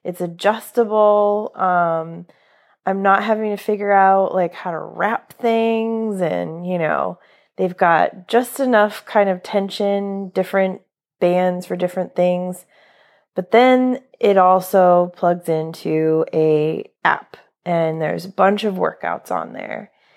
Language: English